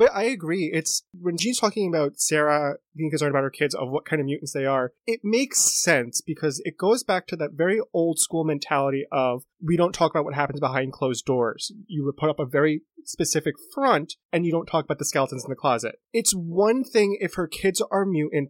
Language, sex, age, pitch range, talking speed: English, male, 20-39, 140-180 Hz, 225 wpm